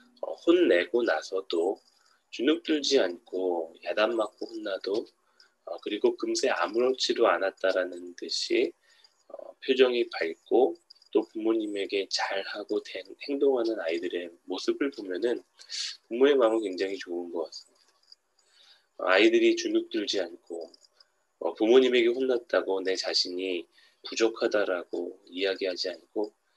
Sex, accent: male, native